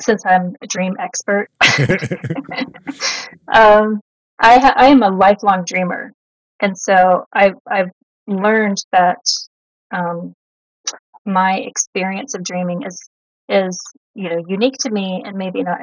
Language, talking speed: English, 130 wpm